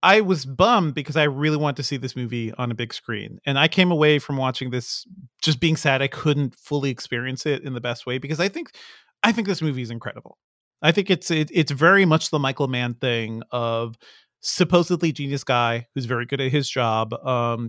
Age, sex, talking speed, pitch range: 30-49, male, 220 wpm, 125-155 Hz